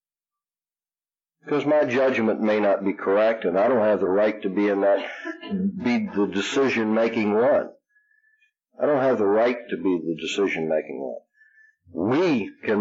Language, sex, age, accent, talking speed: English, male, 60-79, American, 155 wpm